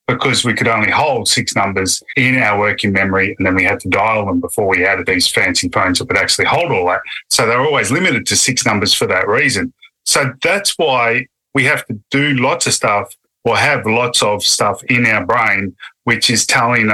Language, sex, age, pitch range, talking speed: English, male, 30-49, 95-120 Hz, 215 wpm